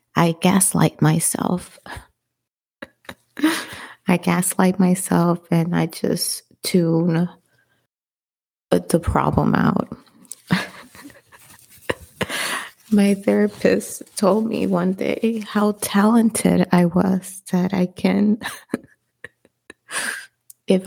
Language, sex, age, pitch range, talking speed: English, female, 30-49, 170-210 Hz, 80 wpm